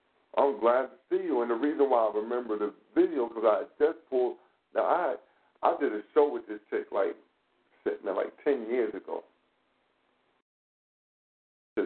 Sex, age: male, 50-69